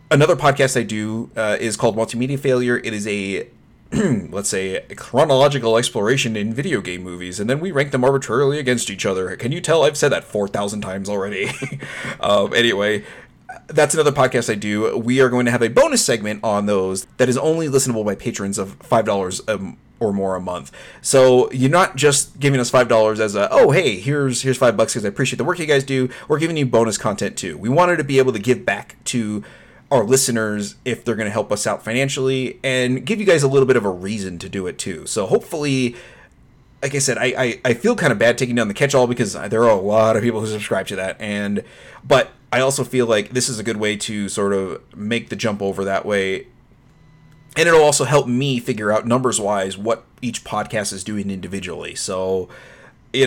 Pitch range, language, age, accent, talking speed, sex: 105-130 Hz, English, 30-49, American, 220 wpm, male